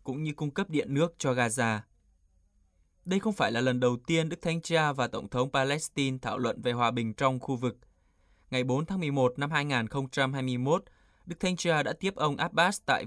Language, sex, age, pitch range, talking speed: Vietnamese, male, 20-39, 120-150 Hz, 200 wpm